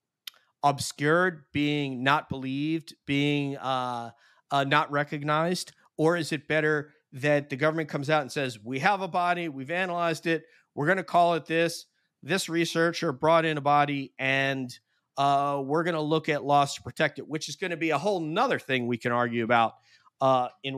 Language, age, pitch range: English, 40-59, 130-160 Hz